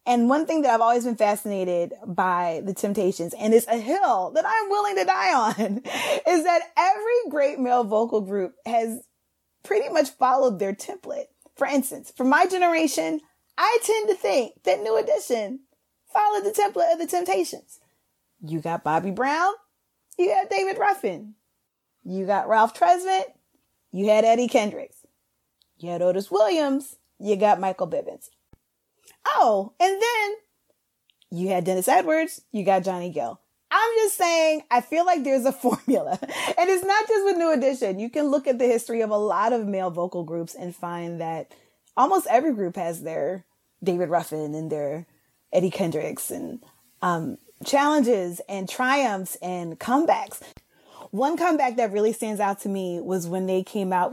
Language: English